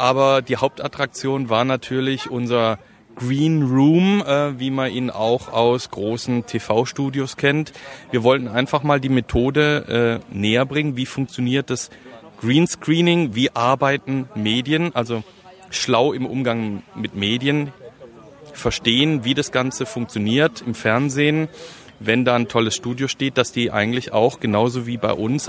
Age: 30-49